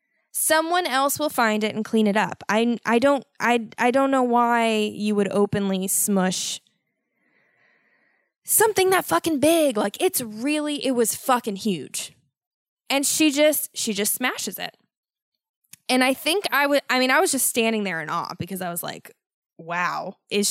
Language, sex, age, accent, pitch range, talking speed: English, female, 10-29, American, 205-275 Hz, 175 wpm